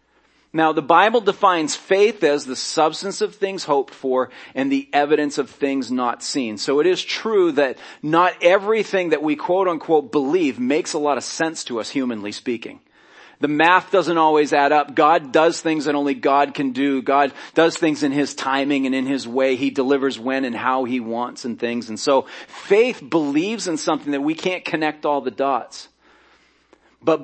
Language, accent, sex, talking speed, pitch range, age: English, American, male, 190 wpm, 140-170 Hz, 40-59